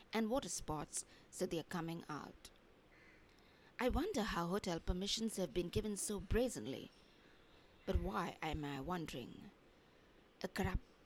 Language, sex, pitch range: English, female, 170-210 Hz